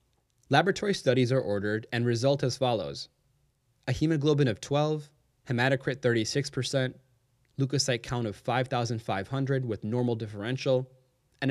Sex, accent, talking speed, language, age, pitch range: male, American, 115 wpm, English, 20-39, 120-140 Hz